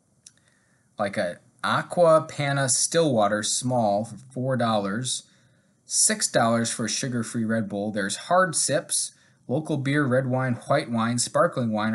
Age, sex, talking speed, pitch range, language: 20-39, male, 125 wpm, 115-155 Hz, English